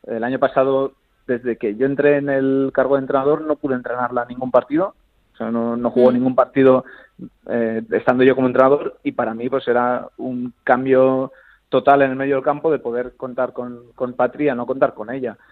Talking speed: 200 wpm